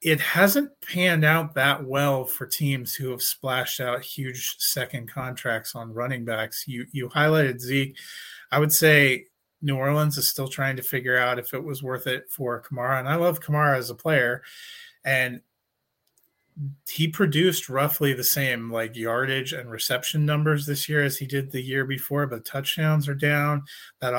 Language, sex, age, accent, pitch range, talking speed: English, male, 30-49, American, 125-150 Hz, 175 wpm